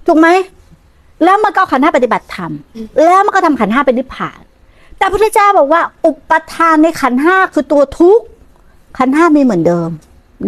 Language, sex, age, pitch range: Thai, female, 60-79, 235-340 Hz